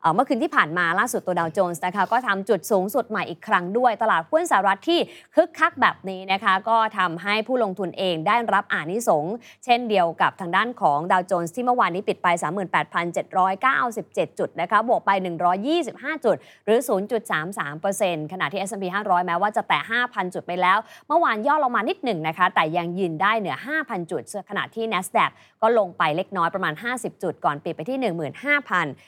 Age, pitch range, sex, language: 20-39, 180-245 Hz, female, Thai